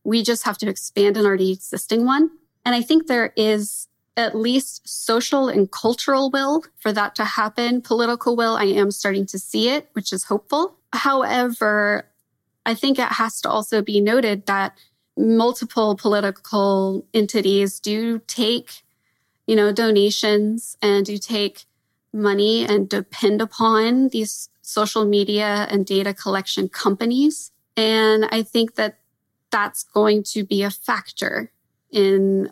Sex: female